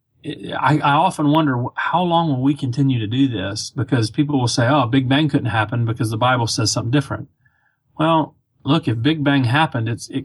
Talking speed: 205 wpm